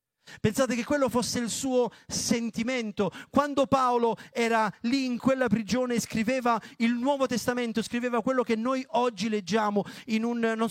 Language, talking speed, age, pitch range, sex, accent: Italian, 145 wpm, 40-59, 205-250 Hz, male, native